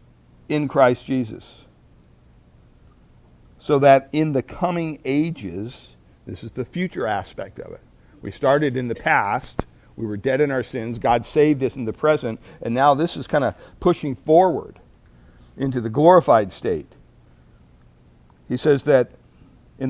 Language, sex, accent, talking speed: English, male, American, 150 wpm